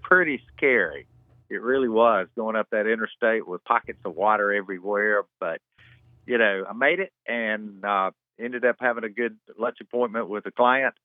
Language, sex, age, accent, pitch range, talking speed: English, male, 50-69, American, 100-125 Hz, 175 wpm